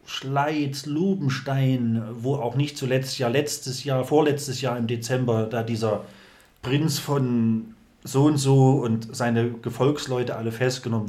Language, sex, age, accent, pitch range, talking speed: German, male, 30-49, German, 115-140 Hz, 145 wpm